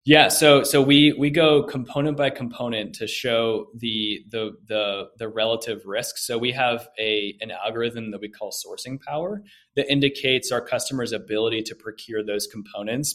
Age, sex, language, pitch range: 20-39, male, English, 110-140 Hz